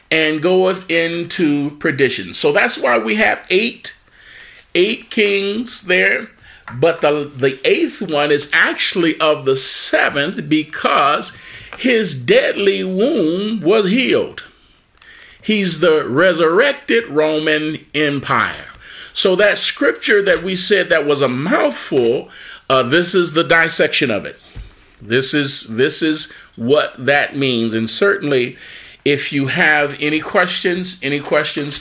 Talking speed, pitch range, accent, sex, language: 125 wpm, 125-185 Hz, American, male, English